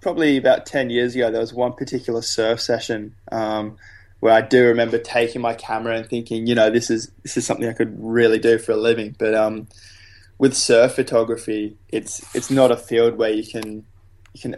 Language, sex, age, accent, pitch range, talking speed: English, male, 20-39, Australian, 110-120 Hz, 205 wpm